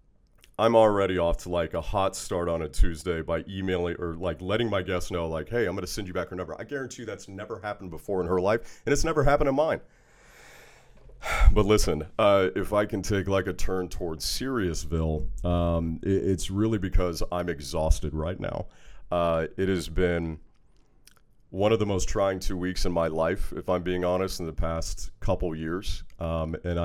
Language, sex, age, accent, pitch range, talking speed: English, male, 40-59, American, 80-95 Hz, 200 wpm